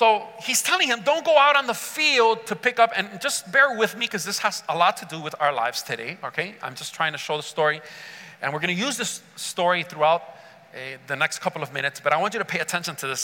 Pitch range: 170-235 Hz